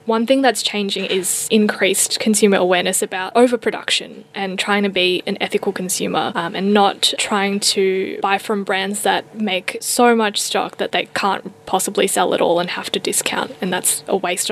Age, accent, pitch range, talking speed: 10-29, Australian, 195-230 Hz, 185 wpm